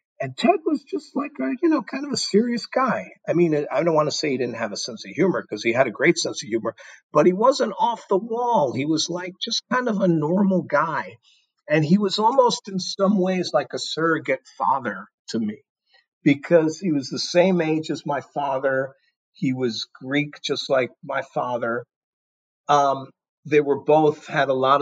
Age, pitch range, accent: 50-69, 130-185 Hz, American